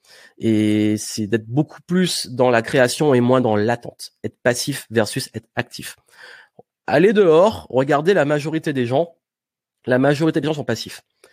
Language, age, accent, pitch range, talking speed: French, 20-39, French, 120-155 Hz, 160 wpm